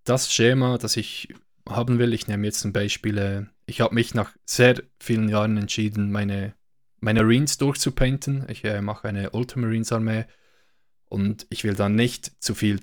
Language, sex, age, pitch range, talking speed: German, male, 20-39, 105-115 Hz, 165 wpm